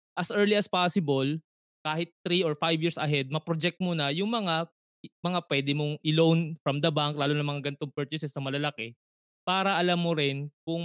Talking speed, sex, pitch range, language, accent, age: 190 wpm, male, 140-170 Hz, Filipino, native, 20-39